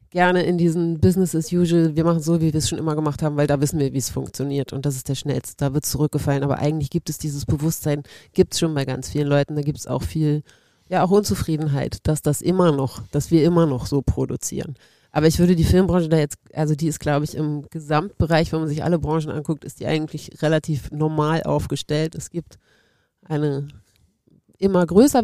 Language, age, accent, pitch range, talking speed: German, 30-49, German, 145-175 Hz, 220 wpm